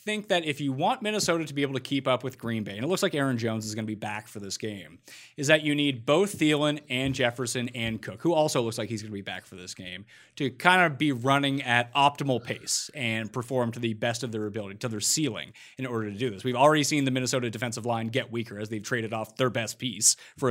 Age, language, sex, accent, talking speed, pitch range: 30-49, English, male, American, 270 wpm, 120-155 Hz